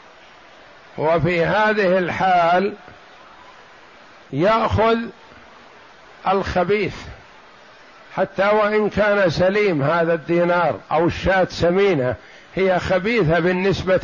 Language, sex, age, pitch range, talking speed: Arabic, male, 60-79, 170-205 Hz, 75 wpm